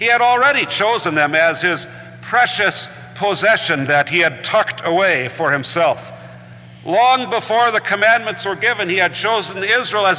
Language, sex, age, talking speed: English, male, 50-69, 160 wpm